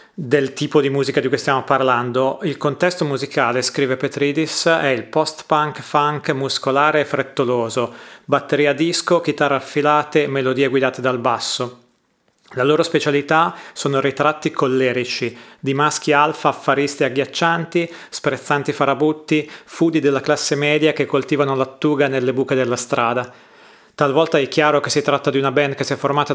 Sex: male